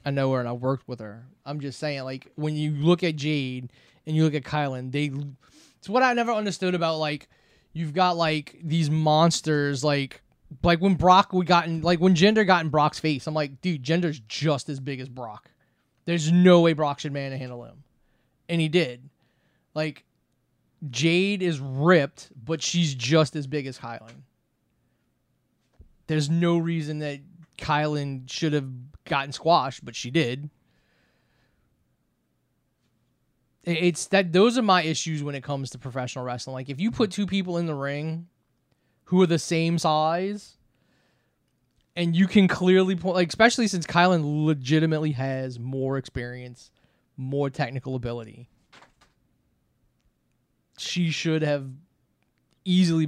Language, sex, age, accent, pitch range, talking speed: English, male, 20-39, American, 135-170 Hz, 155 wpm